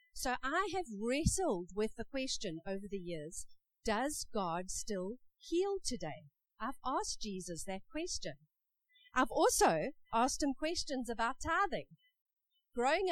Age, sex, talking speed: 50-69, female, 130 wpm